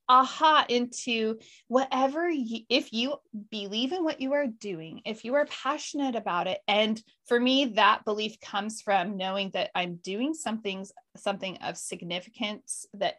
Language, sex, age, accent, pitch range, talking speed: English, female, 30-49, American, 205-265 Hz, 155 wpm